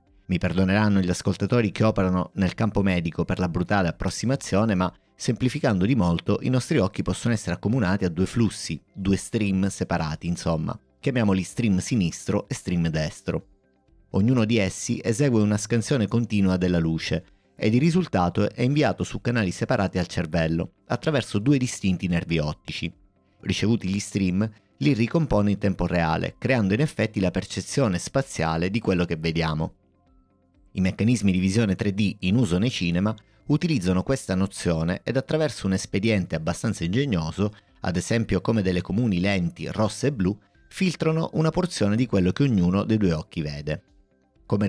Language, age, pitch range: Italian, 30-49, 90-115 Hz